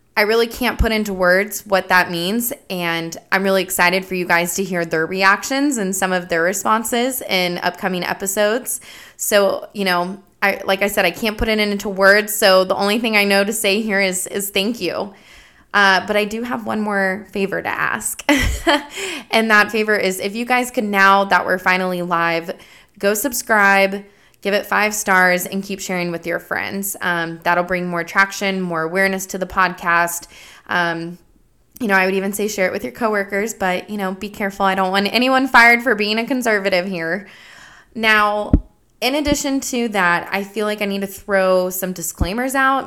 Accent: American